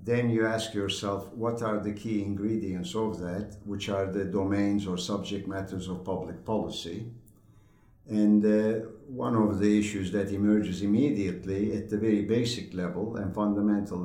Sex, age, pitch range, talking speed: male, 60-79, 95-110 Hz, 160 wpm